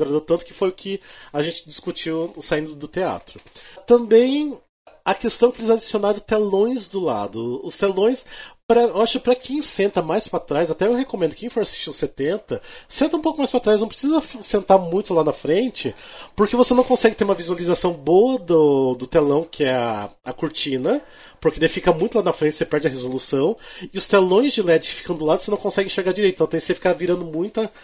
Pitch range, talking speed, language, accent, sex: 165-220 Hz, 215 wpm, Portuguese, Brazilian, male